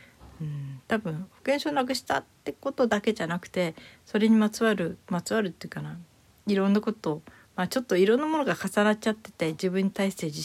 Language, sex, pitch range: Japanese, female, 160-195 Hz